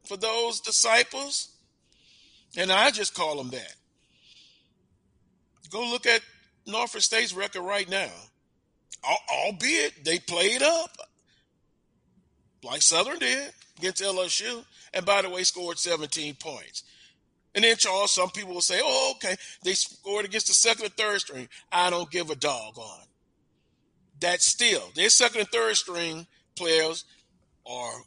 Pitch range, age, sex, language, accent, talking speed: 170-230 Hz, 40-59, male, English, American, 140 wpm